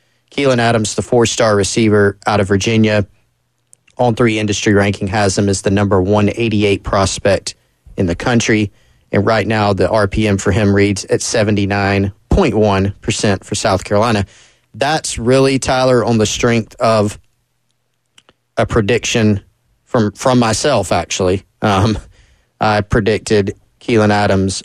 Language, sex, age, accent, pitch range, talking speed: English, male, 30-49, American, 100-120 Hz, 130 wpm